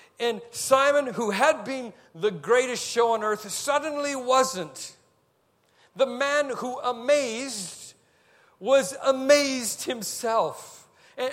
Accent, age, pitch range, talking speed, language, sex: American, 50-69, 205-275 Hz, 105 wpm, English, male